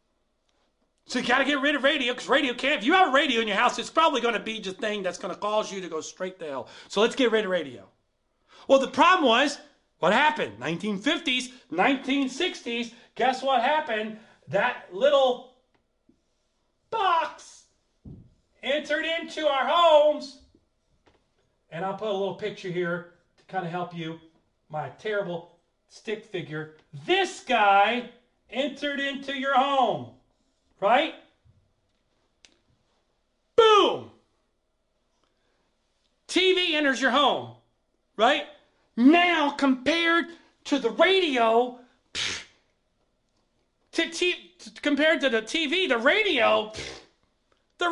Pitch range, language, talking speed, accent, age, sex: 220-300 Hz, English, 130 wpm, American, 40-59, male